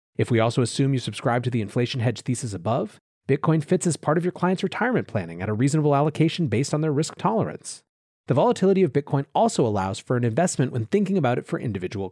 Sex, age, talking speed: male, 30-49, 225 wpm